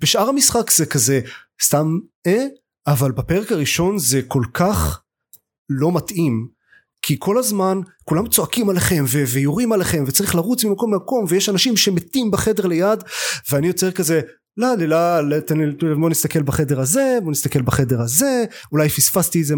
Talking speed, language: 150 wpm, Hebrew